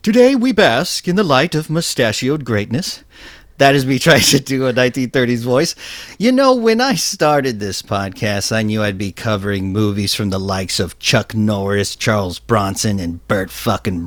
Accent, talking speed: American, 180 wpm